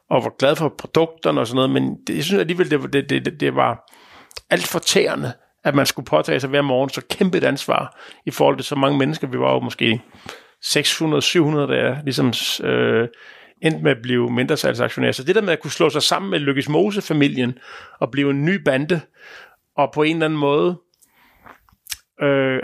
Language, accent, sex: Danish, native, male